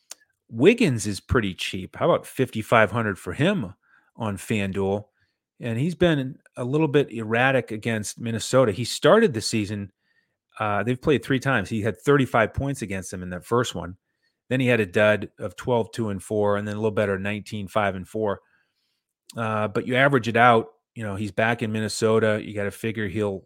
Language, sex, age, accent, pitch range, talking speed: English, male, 30-49, American, 105-125 Hz, 200 wpm